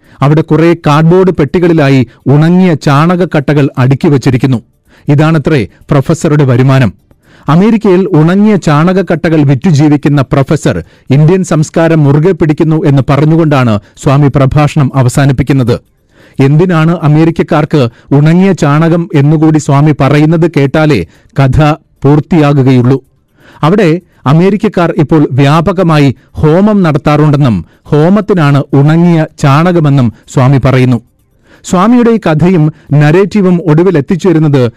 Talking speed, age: 90 wpm, 40-59